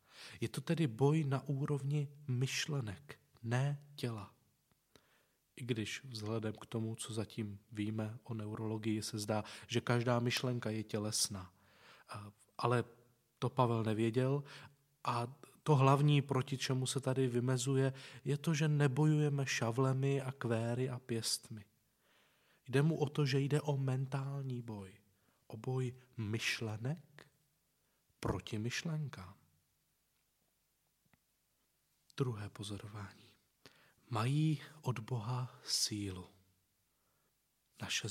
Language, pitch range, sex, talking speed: Czech, 110-140 Hz, male, 105 wpm